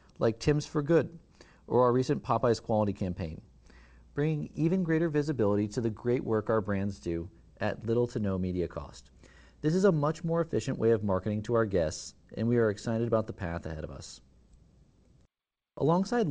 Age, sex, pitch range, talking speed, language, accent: 40-59, male, 95-135 Hz, 185 wpm, English, American